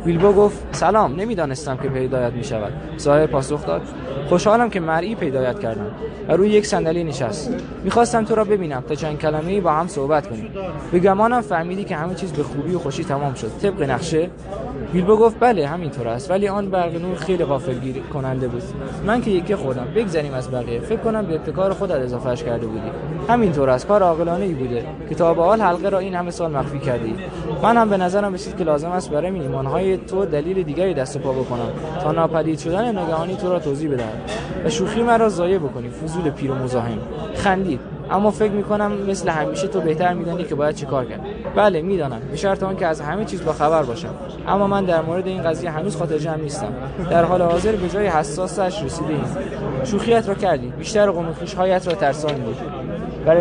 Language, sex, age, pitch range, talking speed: Persian, male, 20-39, 150-195 Hz, 195 wpm